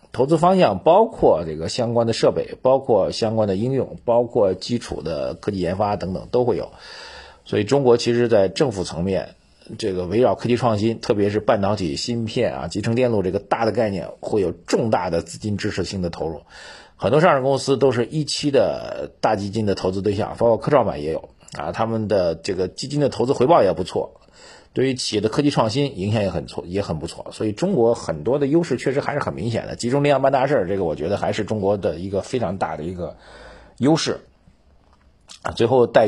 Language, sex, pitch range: Chinese, male, 95-125 Hz